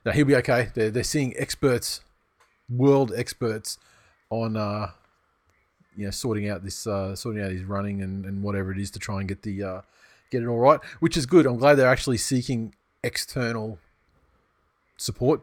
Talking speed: 185 wpm